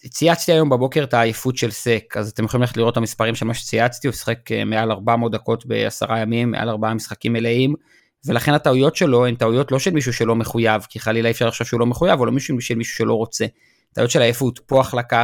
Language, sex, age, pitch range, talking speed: Hebrew, male, 30-49, 115-140 Hz, 215 wpm